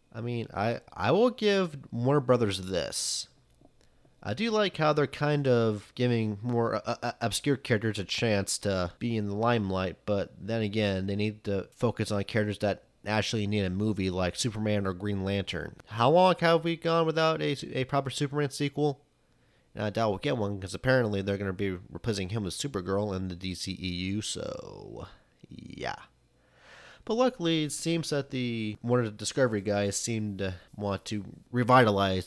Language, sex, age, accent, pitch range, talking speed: English, male, 30-49, American, 100-125 Hz, 175 wpm